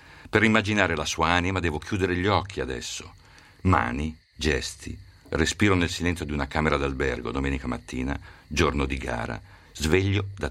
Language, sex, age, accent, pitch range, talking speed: Italian, male, 50-69, native, 75-100 Hz, 150 wpm